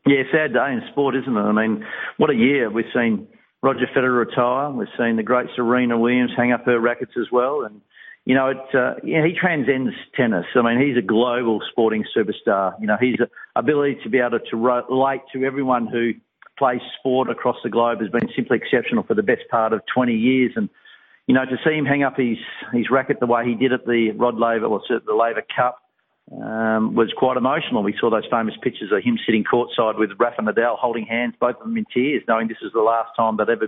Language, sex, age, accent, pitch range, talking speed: English, male, 50-69, Australian, 115-135 Hz, 225 wpm